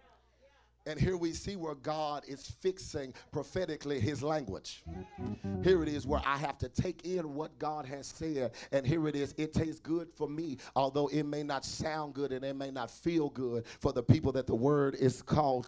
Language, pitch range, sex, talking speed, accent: English, 135-155 Hz, male, 205 wpm, American